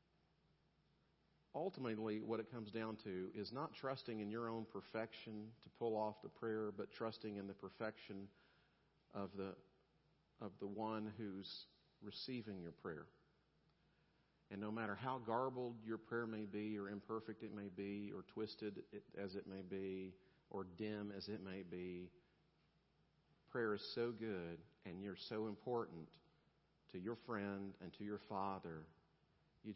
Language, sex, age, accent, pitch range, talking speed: English, male, 50-69, American, 100-130 Hz, 150 wpm